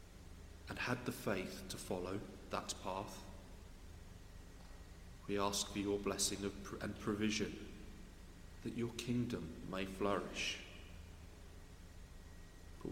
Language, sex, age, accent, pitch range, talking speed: English, male, 40-59, British, 85-100 Hz, 100 wpm